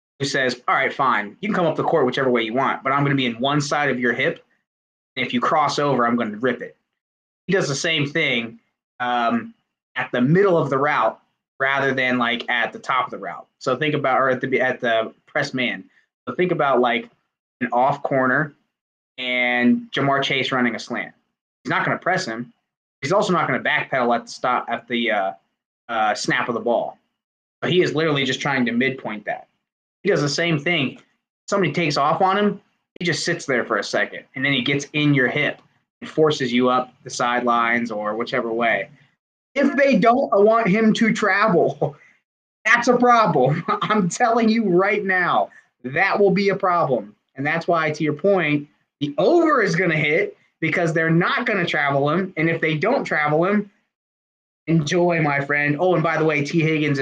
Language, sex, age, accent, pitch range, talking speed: English, male, 20-39, American, 125-175 Hz, 210 wpm